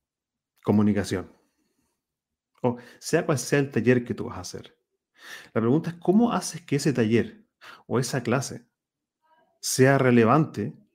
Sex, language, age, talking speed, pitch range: male, Spanish, 40-59, 135 wpm, 110-145 Hz